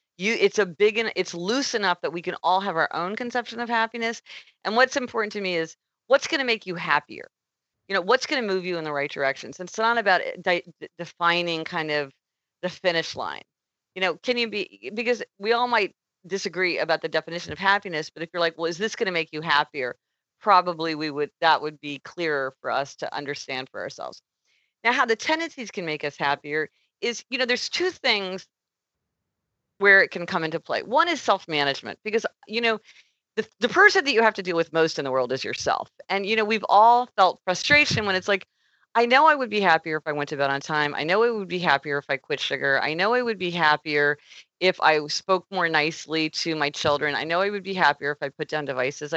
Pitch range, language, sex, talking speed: 155-220 Hz, English, female, 230 wpm